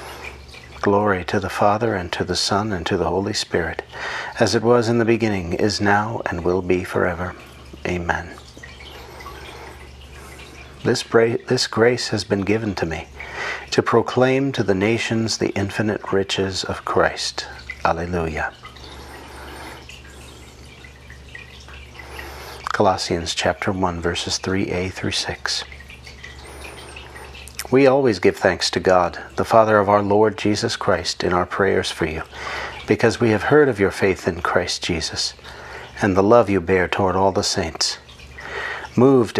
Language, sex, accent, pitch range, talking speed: English, male, American, 65-110 Hz, 135 wpm